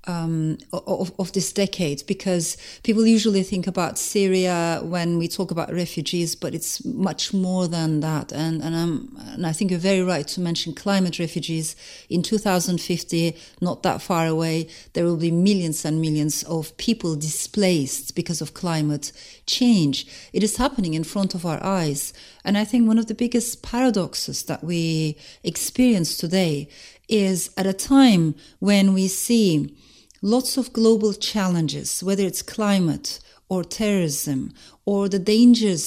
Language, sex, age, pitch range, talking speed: English, female, 40-59, 165-220 Hz, 155 wpm